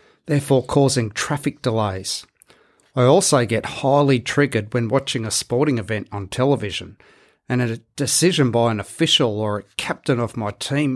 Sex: male